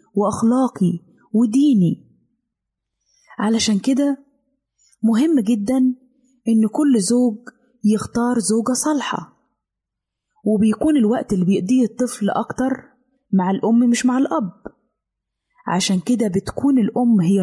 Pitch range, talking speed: 200-255 Hz, 95 wpm